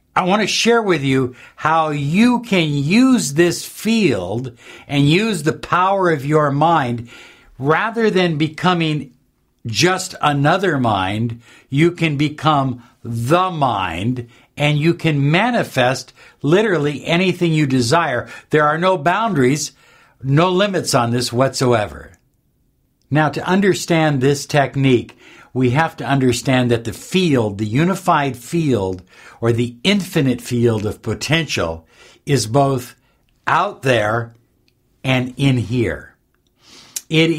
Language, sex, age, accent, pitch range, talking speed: English, male, 60-79, American, 120-160 Hz, 120 wpm